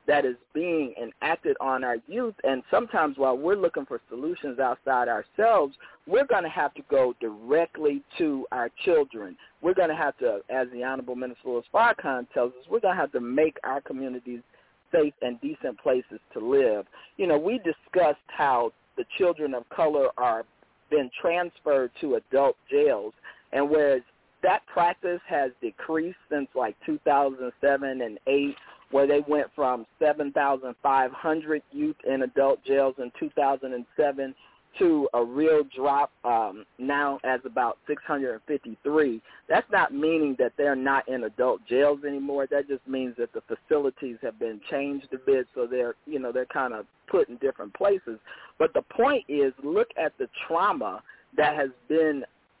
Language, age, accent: English, 50-69, American